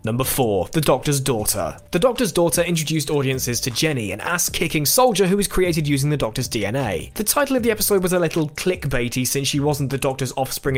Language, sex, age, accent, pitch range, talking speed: English, male, 20-39, British, 130-185 Hz, 205 wpm